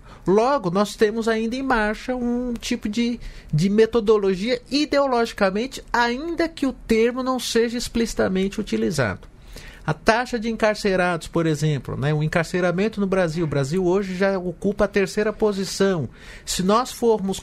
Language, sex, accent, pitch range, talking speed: Portuguese, male, Brazilian, 165-230 Hz, 145 wpm